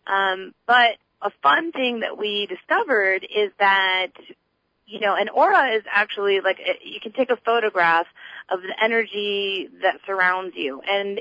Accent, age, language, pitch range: American, 30-49, English, 180-215 Hz